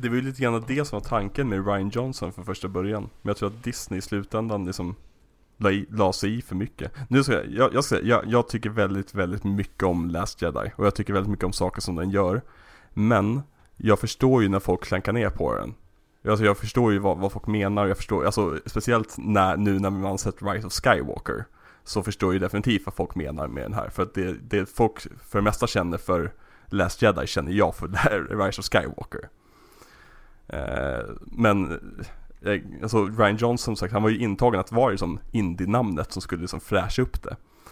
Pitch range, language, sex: 95-110 Hz, Swedish, male